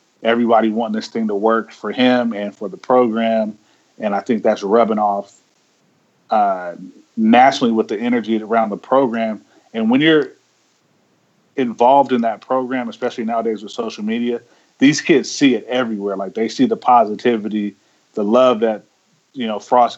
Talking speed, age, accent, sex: 160 wpm, 30-49, American, male